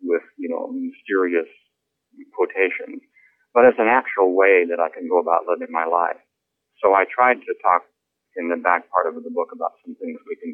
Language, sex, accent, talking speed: English, male, American, 200 wpm